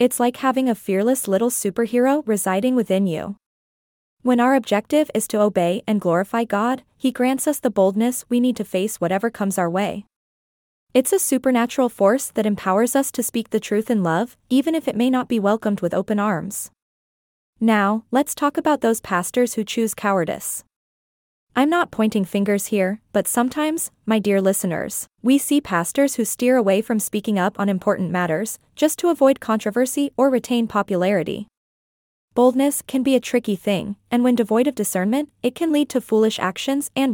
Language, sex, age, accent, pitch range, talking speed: English, female, 20-39, American, 200-255 Hz, 180 wpm